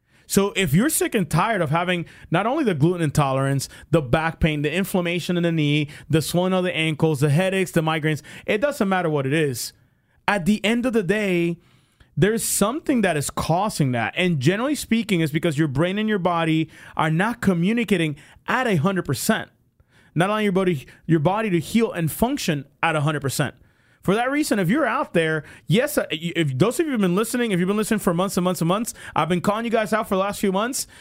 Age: 30-49